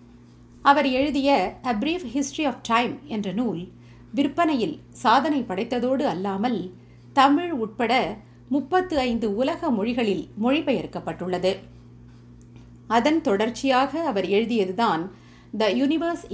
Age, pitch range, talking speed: 50-69, 180-280 Hz, 90 wpm